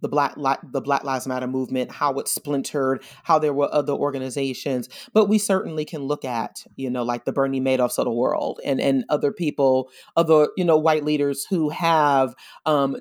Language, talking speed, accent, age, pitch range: English, 195 wpm, American, 30-49, 140-185 Hz